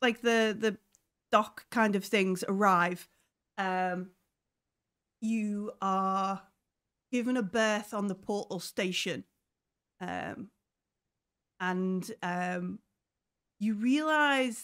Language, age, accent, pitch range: English, 30-49, British, 180-220 Hz